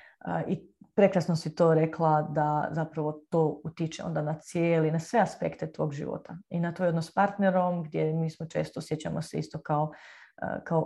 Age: 30-49